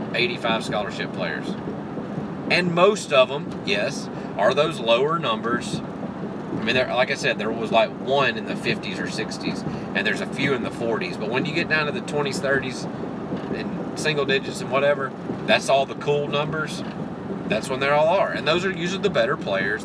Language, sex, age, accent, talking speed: English, male, 30-49, American, 195 wpm